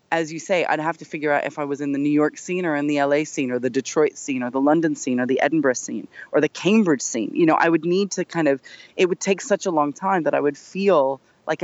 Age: 20-39